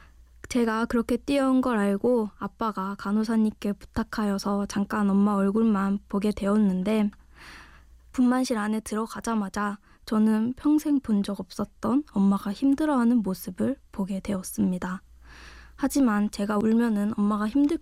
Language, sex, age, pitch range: Korean, female, 20-39, 200-240 Hz